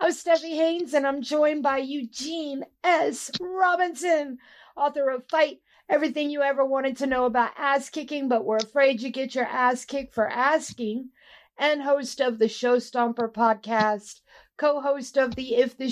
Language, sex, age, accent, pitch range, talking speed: English, female, 50-69, American, 240-285 Hz, 165 wpm